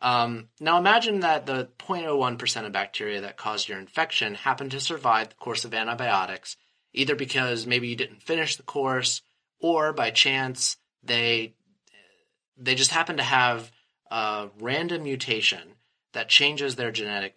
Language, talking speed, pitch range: English, 150 wpm, 110-135 Hz